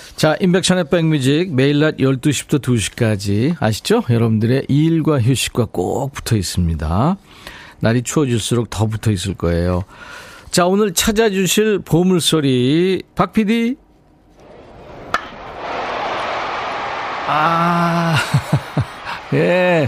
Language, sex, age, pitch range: Korean, male, 50-69, 105-180 Hz